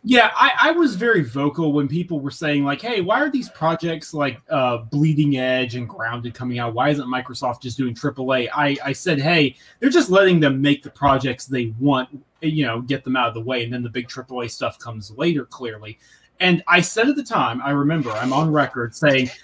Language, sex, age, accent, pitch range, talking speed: English, male, 30-49, American, 130-165 Hz, 220 wpm